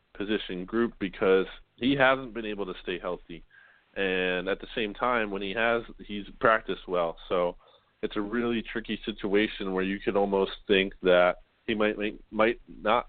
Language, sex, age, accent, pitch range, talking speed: English, male, 20-39, American, 95-110 Hz, 175 wpm